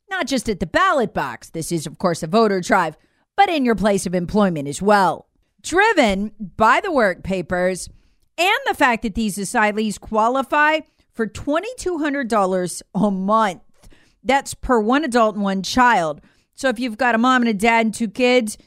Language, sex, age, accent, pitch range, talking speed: English, female, 40-59, American, 190-265 Hz, 180 wpm